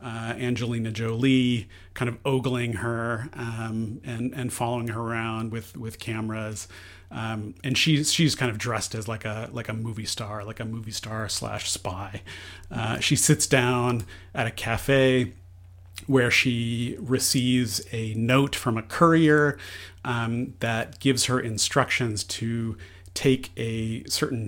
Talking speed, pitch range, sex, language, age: 145 wpm, 105-125 Hz, male, English, 40-59